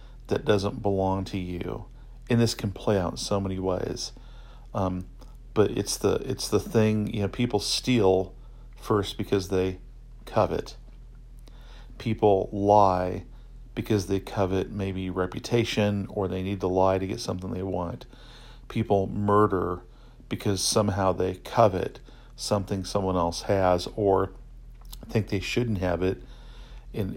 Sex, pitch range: male, 95-110 Hz